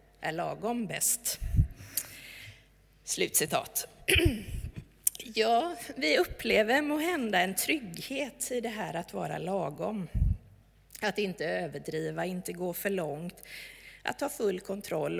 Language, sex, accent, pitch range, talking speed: Swedish, female, native, 185-260 Hz, 110 wpm